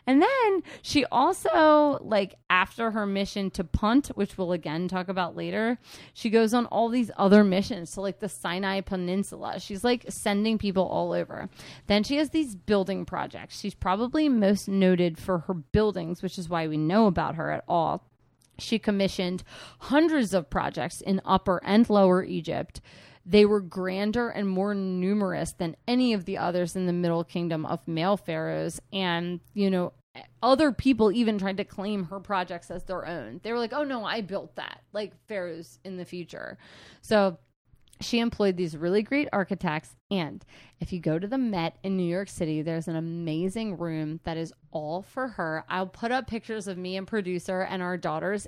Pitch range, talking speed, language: 175-210 Hz, 185 wpm, English